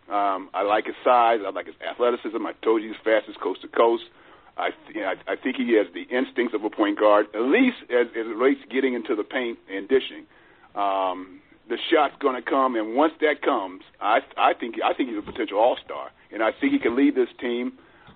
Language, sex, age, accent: English, male, 50-69, American